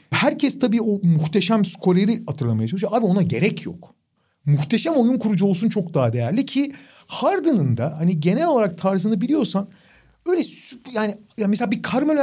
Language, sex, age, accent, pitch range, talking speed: Turkish, male, 40-59, native, 160-215 Hz, 160 wpm